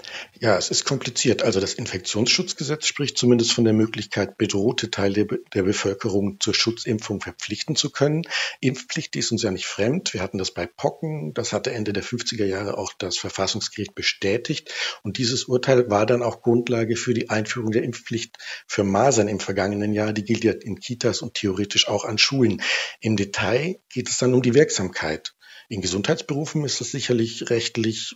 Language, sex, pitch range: German, male, 105-125 Hz